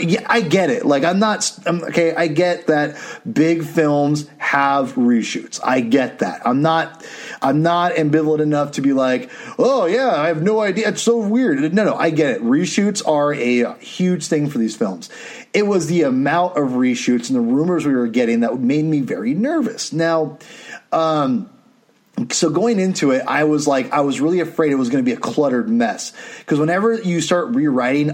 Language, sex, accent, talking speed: English, male, American, 205 wpm